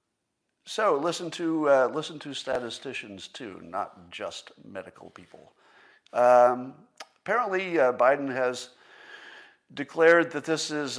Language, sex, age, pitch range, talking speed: English, male, 50-69, 110-145 Hz, 115 wpm